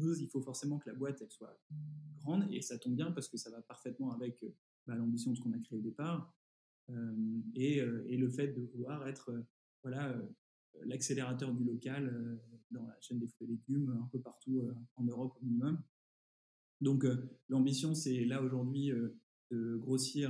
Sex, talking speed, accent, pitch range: male, 190 wpm, French, 115-130 Hz